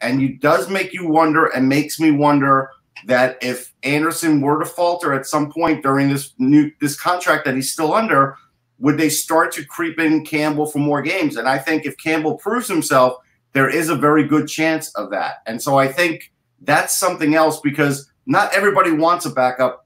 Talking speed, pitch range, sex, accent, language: 200 wpm, 135-165 Hz, male, American, English